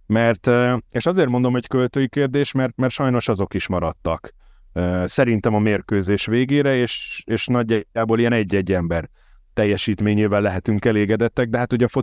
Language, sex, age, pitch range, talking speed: Hungarian, male, 30-49, 100-125 Hz, 150 wpm